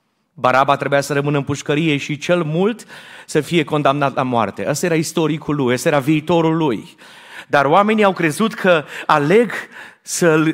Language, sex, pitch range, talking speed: Romanian, male, 135-175 Hz, 165 wpm